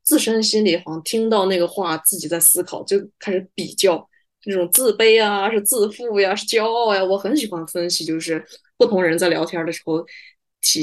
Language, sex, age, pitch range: Chinese, female, 20-39, 180-255 Hz